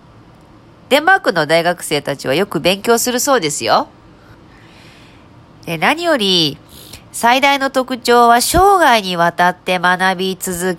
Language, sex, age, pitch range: Japanese, female, 40-59, 165-230 Hz